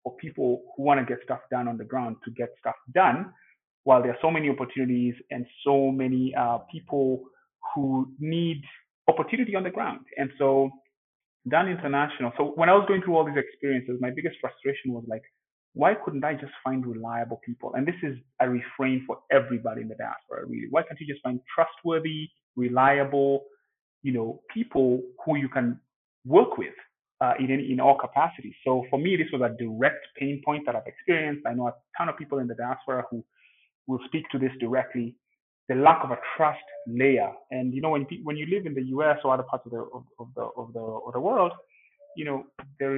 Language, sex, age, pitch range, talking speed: English, male, 30-49, 125-155 Hz, 205 wpm